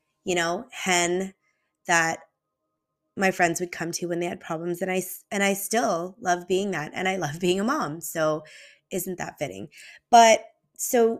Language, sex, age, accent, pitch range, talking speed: English, female, 20-39, American, 185-260 Hz, 170 wpm